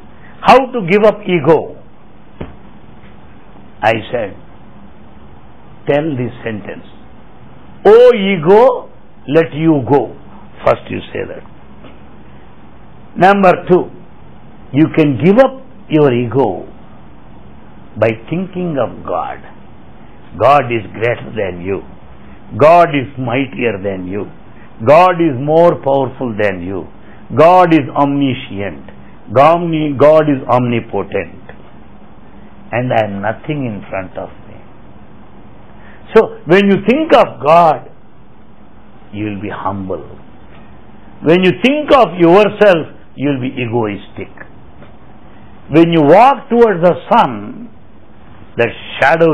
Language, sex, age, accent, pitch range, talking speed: English, male, 60-79, Indian, 110-175 Hz, 105 wpm